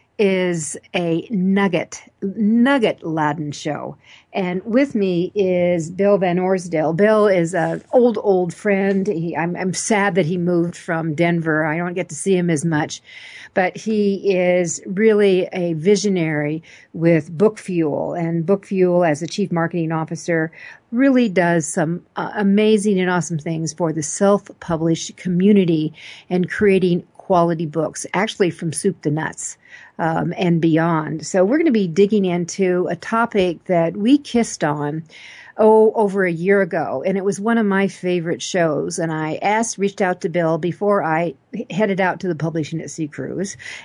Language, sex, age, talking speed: English, female, 50-69, 165 wpm